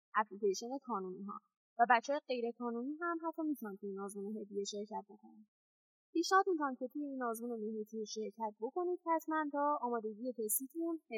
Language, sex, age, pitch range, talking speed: Persian, female, 10-29, 220-310 Hz, 140 wpm